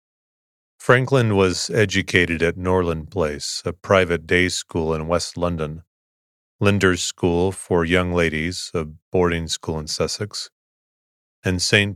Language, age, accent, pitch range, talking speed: English, 30-49, American, 80-95 Hz, 125 wpm